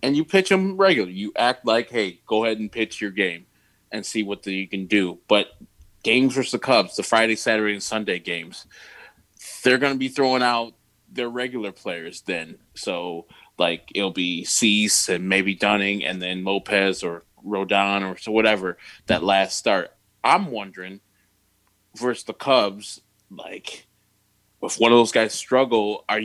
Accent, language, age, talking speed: American, English, 20-39, 175 wpm